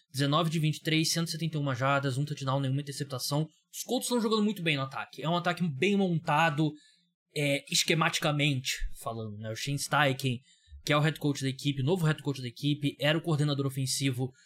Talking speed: 190 wpm